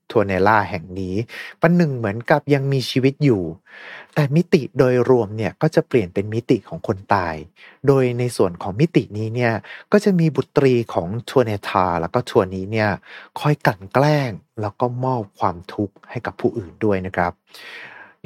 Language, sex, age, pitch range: Thai, male, 30-49, 100-145 Hz